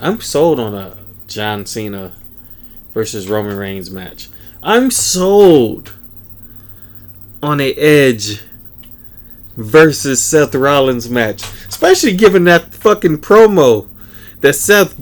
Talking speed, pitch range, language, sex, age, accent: 105 wpm, 105-145 Hz, English, male, 20-39, American